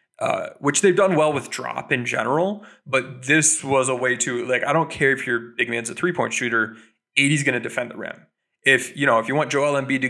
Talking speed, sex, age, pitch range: 245 wpm, male, 20-39, 120-155 Hz